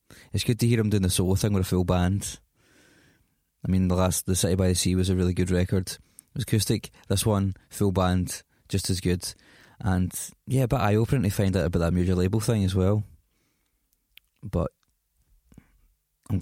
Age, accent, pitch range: 20-39, British, 90-105 Hz